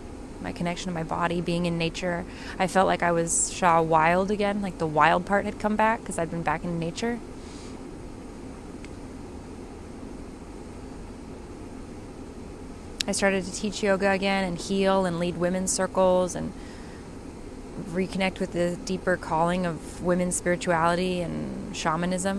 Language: English